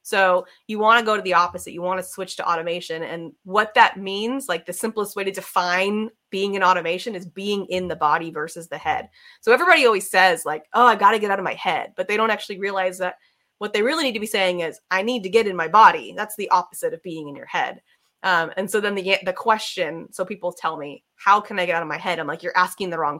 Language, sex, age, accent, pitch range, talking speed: English, female, 20-39, American, 175-220 Hz, 265 wpm